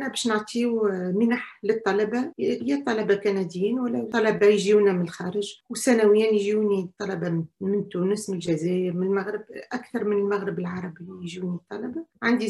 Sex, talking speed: female, 130 wpm